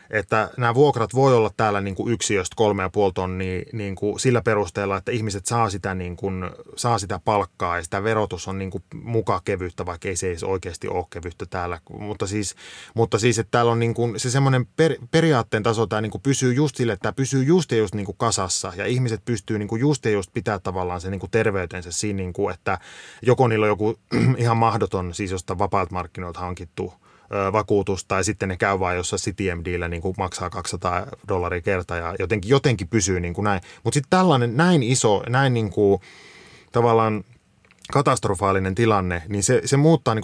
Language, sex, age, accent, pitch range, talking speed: Finnish, male, 20-39, native, 95-120 Hz, 200 wpm